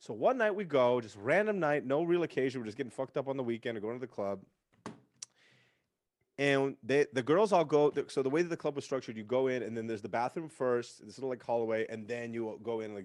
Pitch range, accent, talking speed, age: 120-150 Hz, American, 265 wpm, 30-49